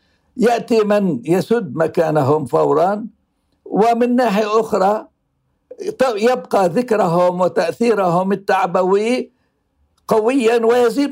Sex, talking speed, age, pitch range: male, 75 wpm, 60-79, 170-225 Hz